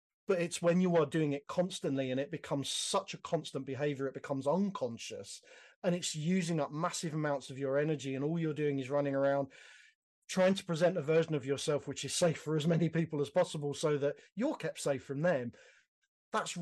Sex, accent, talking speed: male, British, 210 wpm